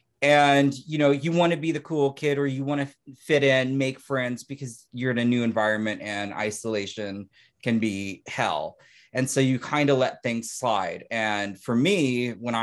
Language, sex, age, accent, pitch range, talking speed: English, male, 30-49, American, 105-135 Hz, 185 wpm